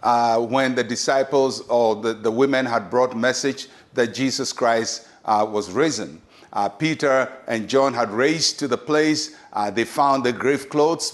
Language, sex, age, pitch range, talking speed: English, male, 50-69, 125-155 Hz, 170 wpm